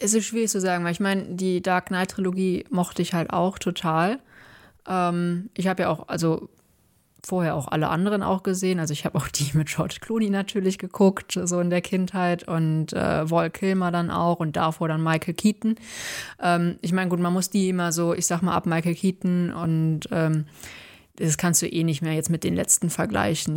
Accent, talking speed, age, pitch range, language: German, 210 wpm, 20-39, 160-180 Hz, English